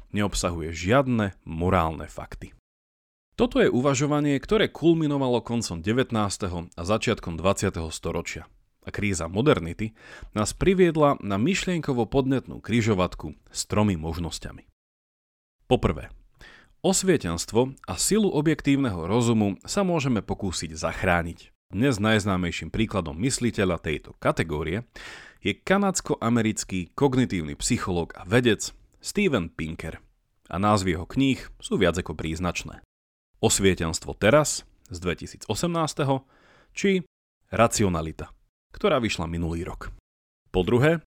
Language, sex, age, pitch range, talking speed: Slovak, male, 40-59, 85-135 Hz, 100 wpm